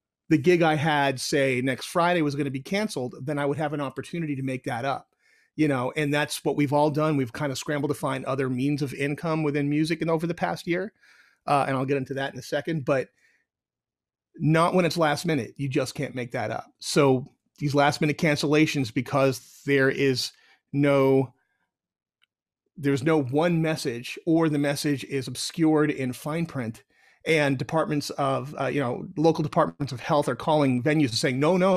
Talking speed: 200 wpm